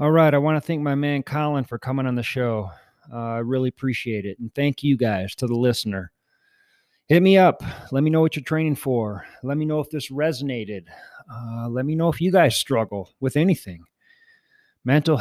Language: English